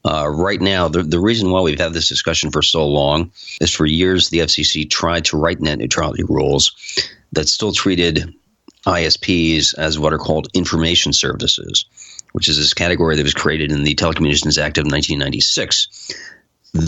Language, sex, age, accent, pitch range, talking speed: English, male, 40-59, American, 75-90 Hz, 170 wpm